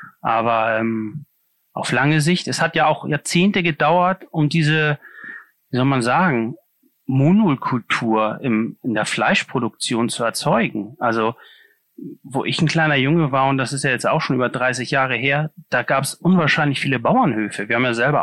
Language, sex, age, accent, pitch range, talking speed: German, male, 30-49, German, 125-155 Hz, 170 wpm